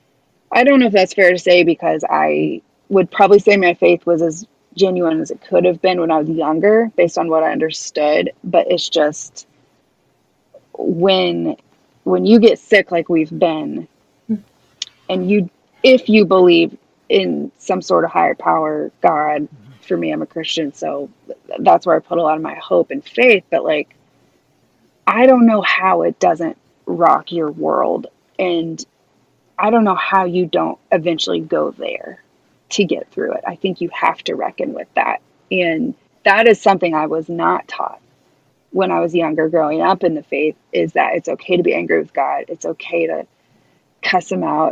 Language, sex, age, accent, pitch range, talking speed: English, female, 30-49, American, 160-205 Hz, 185 wpm